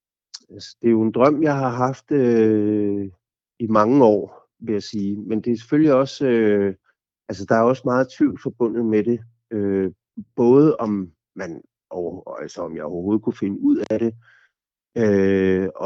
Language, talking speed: Danish, 170 wpm